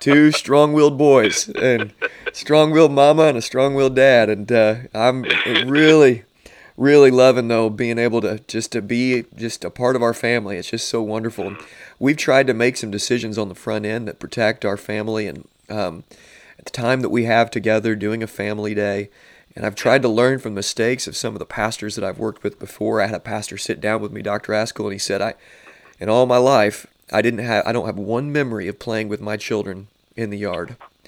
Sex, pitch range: male, 105-130 Hz